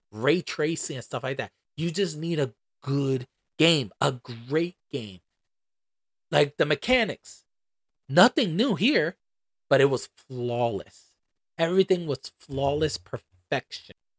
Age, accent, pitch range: 30-49, American, 120-160 Hz